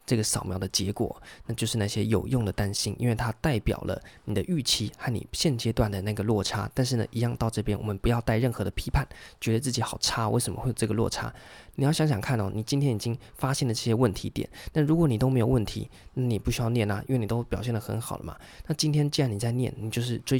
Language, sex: Chinese, male